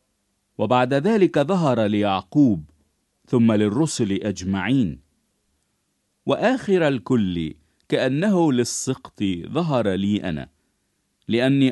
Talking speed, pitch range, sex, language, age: 75 wpm, 95-145 Hz, male, English, 50-69